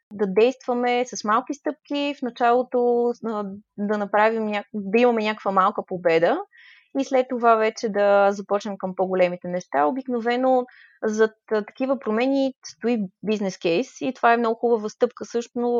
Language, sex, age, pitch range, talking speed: Bulgarian, female, 20-39, 195-235 Hz, 135 wpm